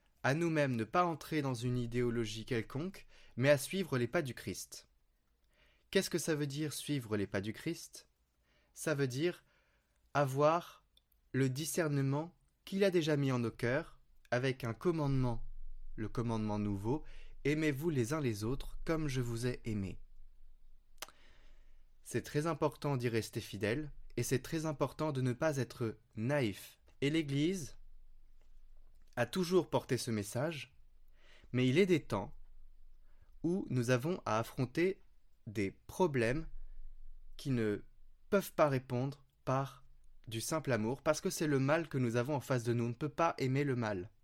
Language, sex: French, male